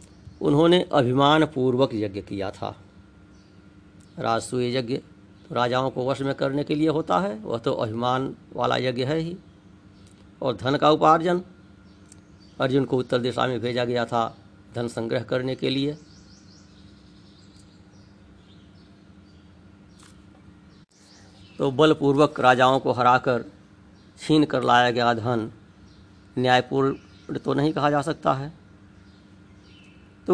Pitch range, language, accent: 100-135 Hz, Hindi, native